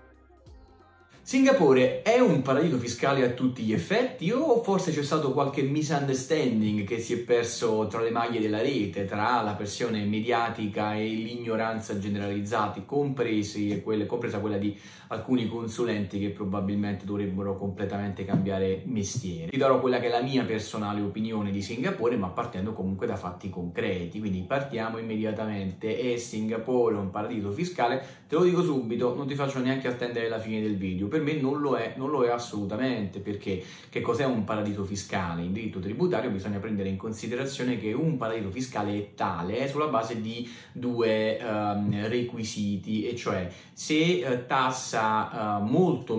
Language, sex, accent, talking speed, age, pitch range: Italian, male, native, 155 wpm, 20-39, 100-120 Hz